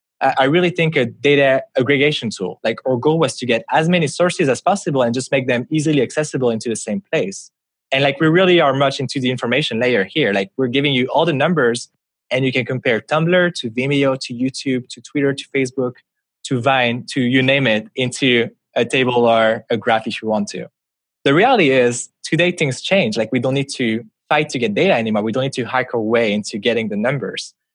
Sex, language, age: male, English, 20-39